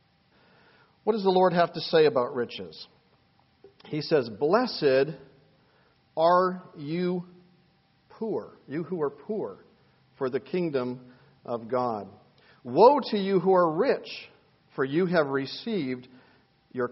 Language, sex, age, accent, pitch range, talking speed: English, male, 50-69, American, 130-185 Hz, 125 wpm